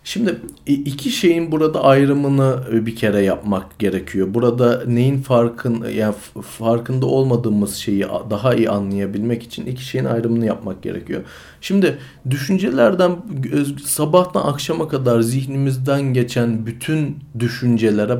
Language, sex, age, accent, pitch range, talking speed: Turkish, male, 40-59, native, 115-135 Hz, 110 wpm